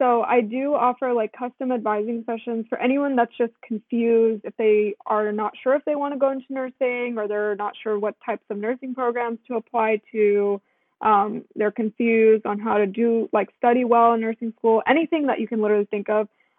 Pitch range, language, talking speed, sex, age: 215-245 Hz, English, 205 wpm, female, 20-39